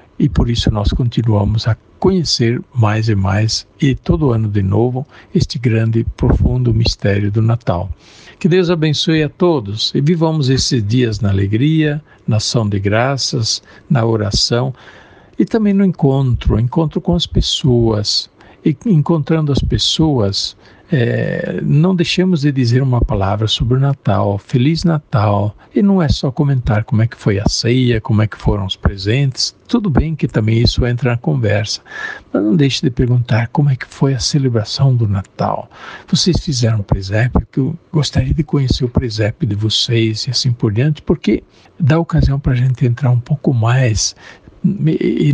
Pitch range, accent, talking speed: 110-150 Hz, Brazilian, 170 wpm